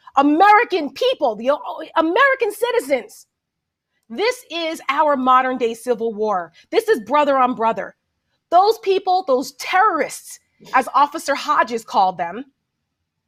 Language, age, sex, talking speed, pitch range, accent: English, 30-49, female, 120 wpm, 255-390 Hz, American